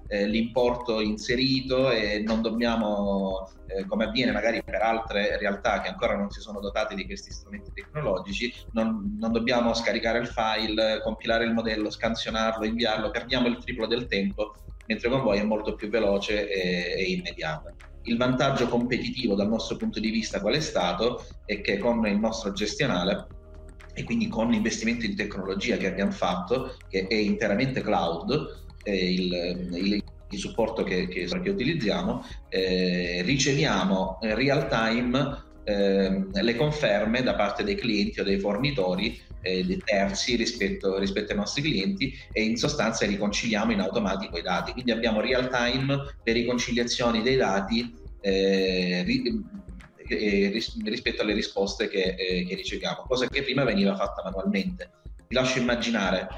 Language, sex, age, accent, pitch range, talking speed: Italian, male, 30-49, native, 95-120 Hz, 145 wpm